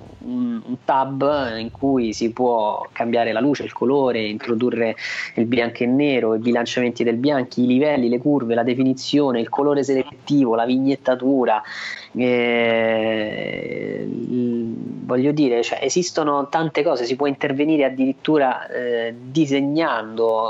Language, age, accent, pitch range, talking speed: Italian, 20-39, native, 115-140 Hz, 130 wpm